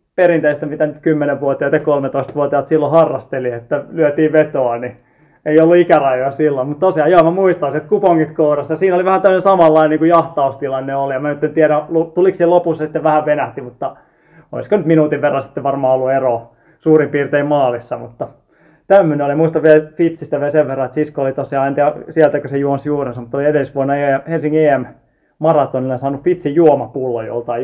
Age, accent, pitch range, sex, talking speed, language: 20-39, native, 130-160 Hz, male, 180 wpm, Finnish